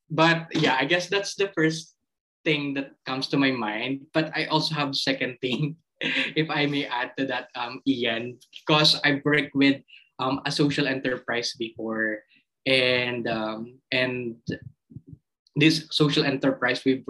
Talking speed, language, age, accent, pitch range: 155 wpm, English, 20-39, Filipino, 125-150 Hz